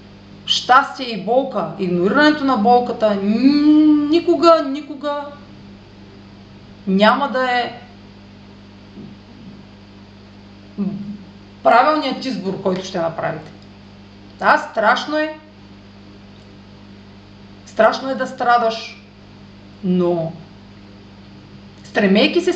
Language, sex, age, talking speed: Bulgarian, female, 40-59, 70 wpm